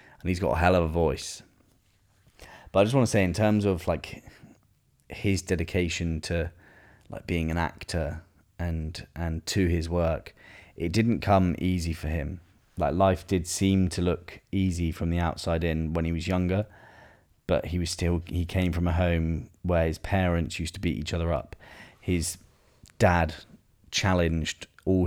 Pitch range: 85-95 Hz